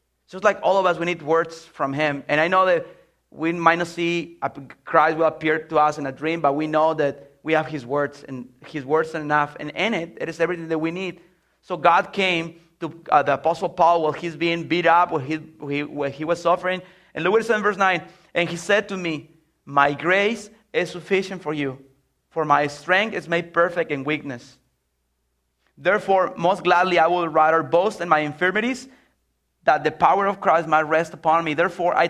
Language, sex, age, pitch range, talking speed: English, male, 30-49, 150-175 Hz, 210 wpm